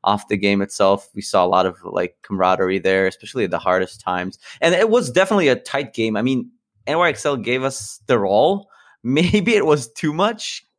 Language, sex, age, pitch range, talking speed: English, male, 20-39, 100-135 Hz, 200 wpm